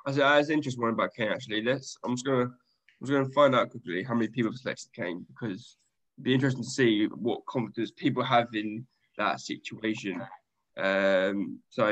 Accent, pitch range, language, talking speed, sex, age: British, 110-135 Hz, English, 195 wpm, male, 10-29